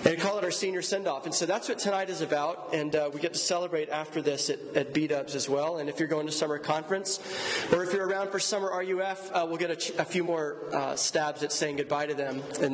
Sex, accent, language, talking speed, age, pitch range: male, American, English, 275 wpm, 30-49, 155-195 Hz